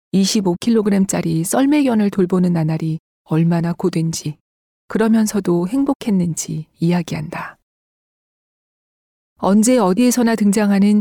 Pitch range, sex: 170-210 Hz, female